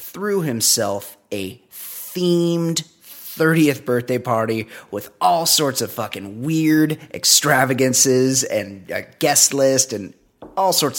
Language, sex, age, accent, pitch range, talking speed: English, male, 30-49, American, 115-155 Hz, 115 wpm